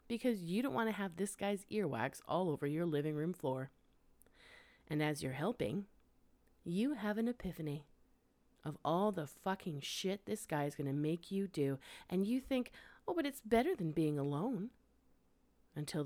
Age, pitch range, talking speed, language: 40-59, 155-230 Hz, 175 wpm, English